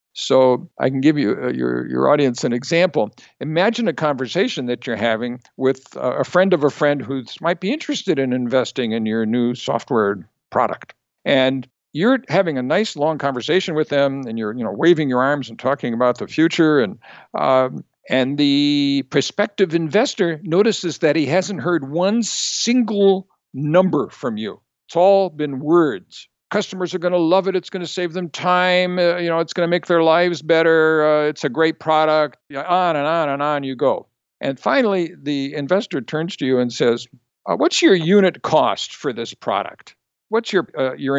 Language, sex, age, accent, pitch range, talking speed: English, male, 60-79, American, 135-180 Hz, 190 wpm